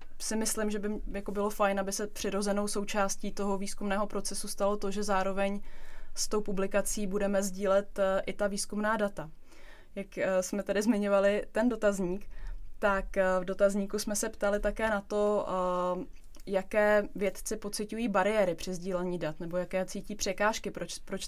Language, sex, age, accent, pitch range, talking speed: Czech, female, 20-39, native, 195-210 Hz, 155 wpm